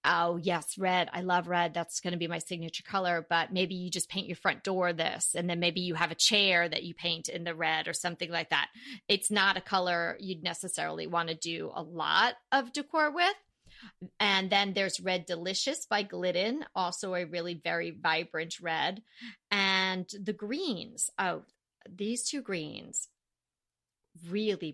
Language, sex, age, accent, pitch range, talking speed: English, female, 30-49, American, 170-205 Hz, 180 wpm